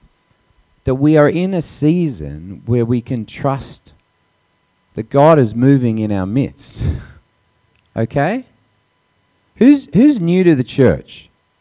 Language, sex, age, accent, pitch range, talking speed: English, male, 40-59, Australian, 125-205 Hz, 120 wpm